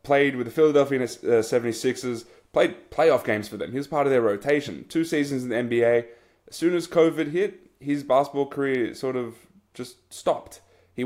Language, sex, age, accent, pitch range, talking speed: English, male, 20-39, Australian, 120-145 Hz, 185 wpm